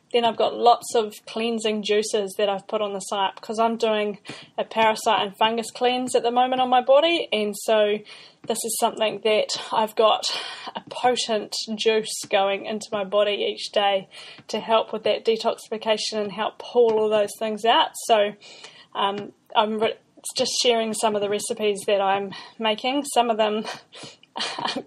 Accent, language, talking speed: Australian, English, 175 wpm